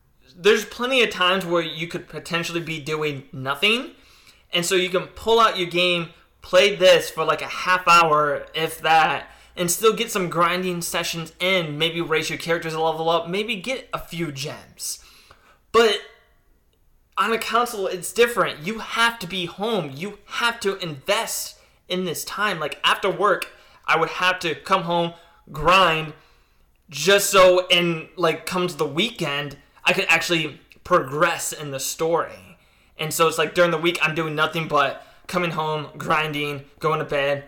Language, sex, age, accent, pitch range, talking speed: English, male, 20-39, American, 155-185 Hz, 170 wpm